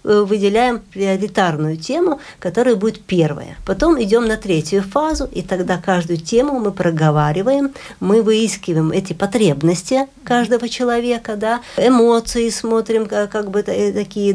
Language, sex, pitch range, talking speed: Russian, female, 185-235 Hz, 120 wpm